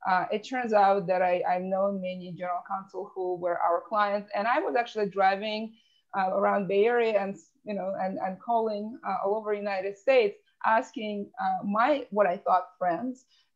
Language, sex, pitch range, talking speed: English, female, 185-225 Hz, 190 wpm